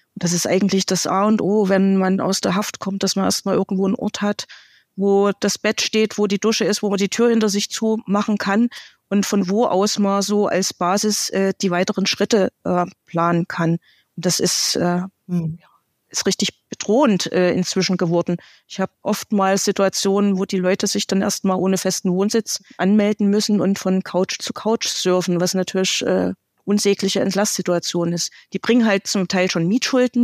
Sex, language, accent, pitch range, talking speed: female, German, German, 180-205 Hz, 185 wpm